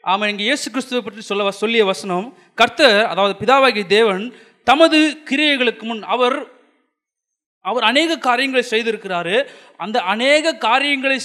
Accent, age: native, 30-49